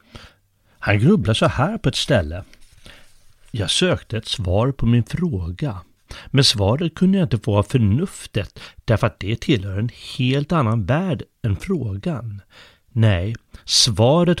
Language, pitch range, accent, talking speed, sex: Swedish, 100-140 Hz, native, 140 wpm, male